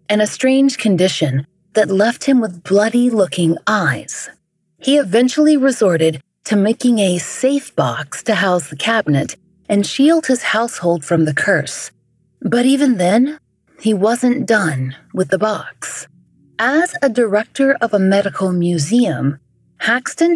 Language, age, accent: English, 30-49, American